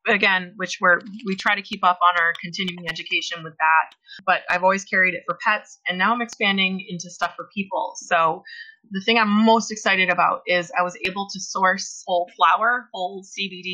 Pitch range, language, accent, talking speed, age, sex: 175-195 Hz, English, American, 200 wpm, 20-39, female